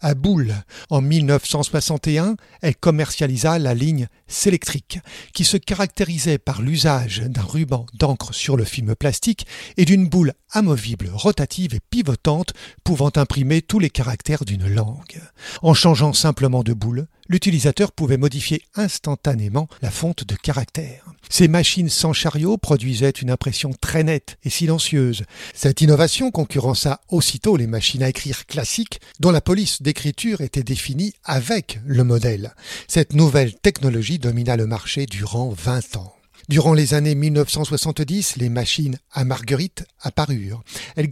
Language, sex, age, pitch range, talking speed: French, male, 50-69, 125-160 Hz, 145 wpm